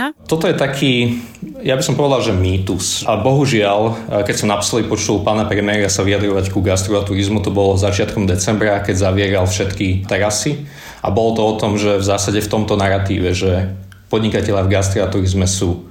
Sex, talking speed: male, 175 wpm